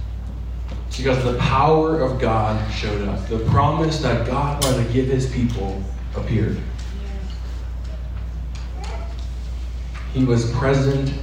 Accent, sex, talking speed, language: American, male, 105 wpm, English